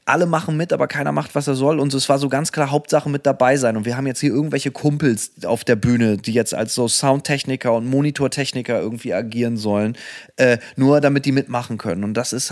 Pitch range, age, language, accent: 115-140 Hz, 20-39, German, German